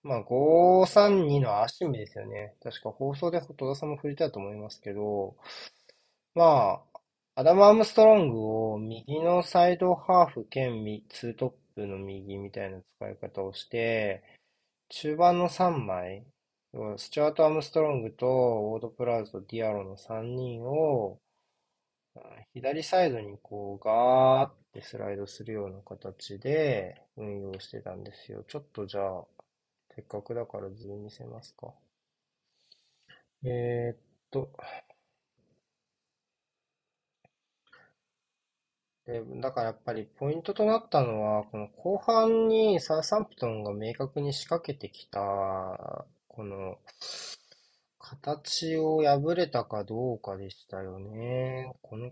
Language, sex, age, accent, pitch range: Japanese, male, 20-39, native, 105-150 Hz